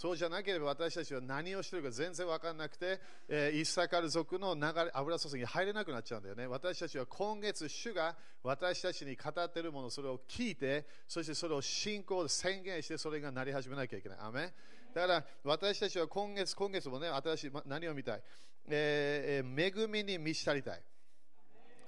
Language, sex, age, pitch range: Japanese, male, 40-59, 140-185 Hz